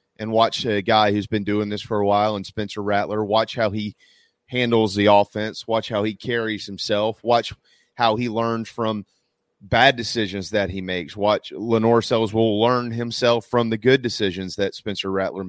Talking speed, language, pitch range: 185 wpm, English, 105-125 Hz